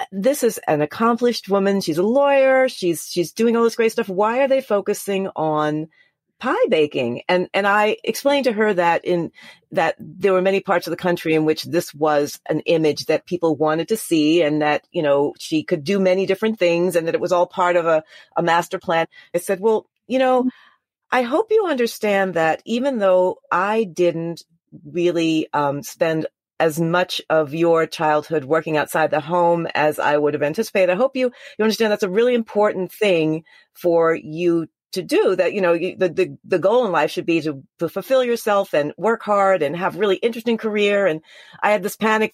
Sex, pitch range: female, 165-230 Hz